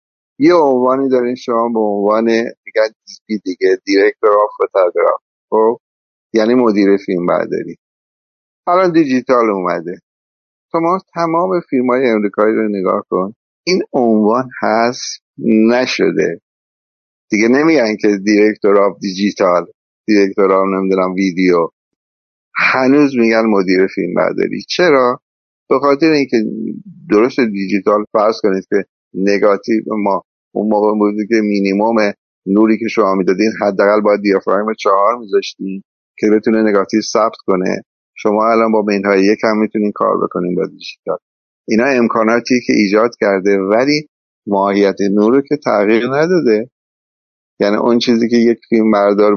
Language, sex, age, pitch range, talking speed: Persian, male, 60-79, 100-120 Hz, 130 wpm